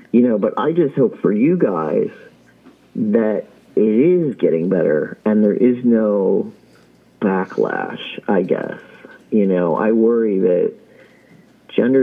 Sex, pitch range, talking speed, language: male, 105-160 Hz, 135 wpm, English